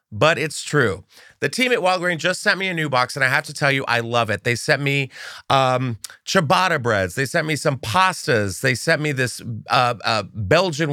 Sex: male